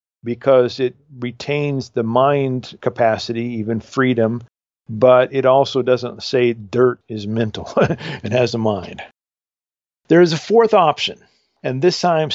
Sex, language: male, English